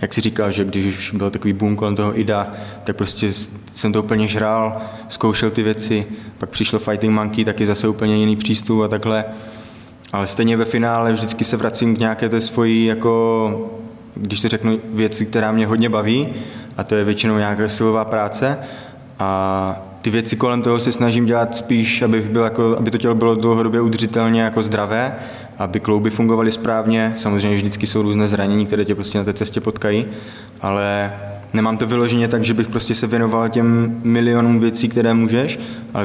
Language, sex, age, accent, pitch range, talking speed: Czech, male, 20-39, native, 105-115 Hz, 185 wpm